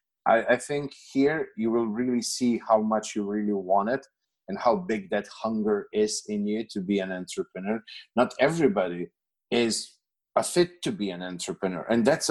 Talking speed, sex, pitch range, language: 175 wpm, male, 95-140 Hz, English